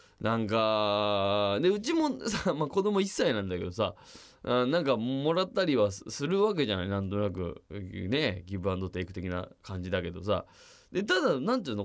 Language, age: Japanese, 20-39